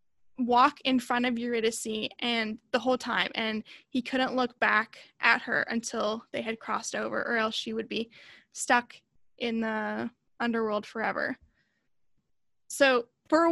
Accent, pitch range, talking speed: American, 240-295 Hz, 150 wpm